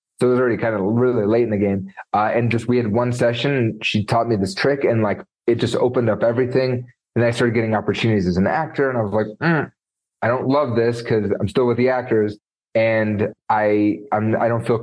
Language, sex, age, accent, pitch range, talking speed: English, male, 30-49, American, 105-125 Hz, 245 wpm